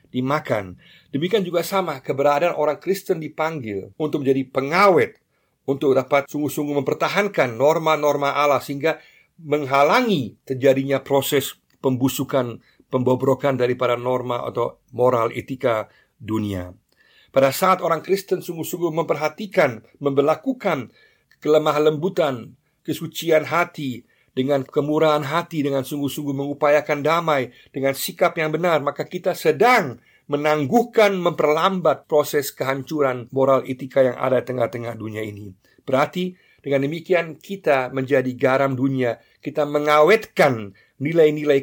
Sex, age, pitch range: male, 50-69, 130-155 Hz